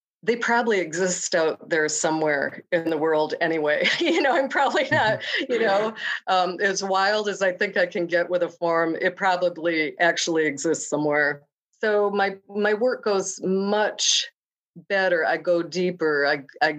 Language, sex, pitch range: English, female, 160-205 Hz